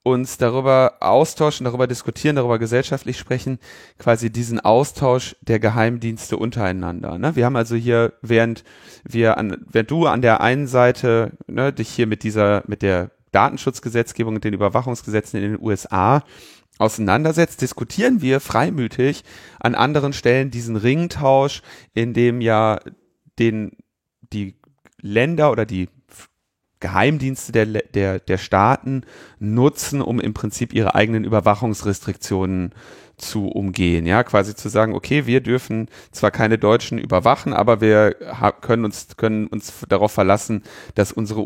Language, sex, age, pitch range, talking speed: German, male, 30-49, 105-125 Hz, 140 wpm